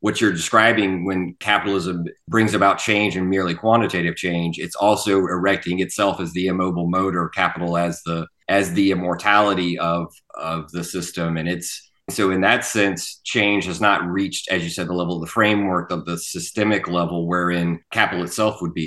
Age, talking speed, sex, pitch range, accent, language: 30-49, 180 wpm, male, 85-110 Hz, American, English